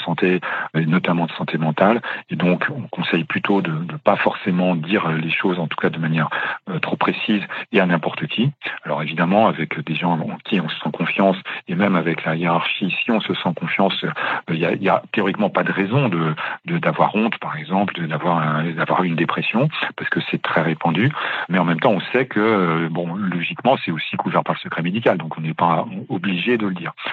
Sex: male